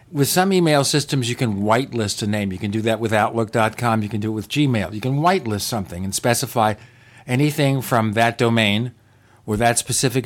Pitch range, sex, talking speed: 110-145 Hz, male, 200 wpm